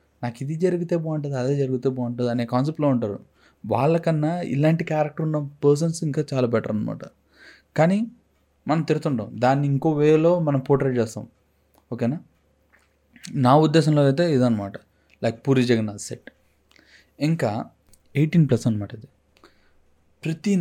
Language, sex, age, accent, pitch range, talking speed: Telugu, male, 30-49, native, 115-145 Hz, 125 wpm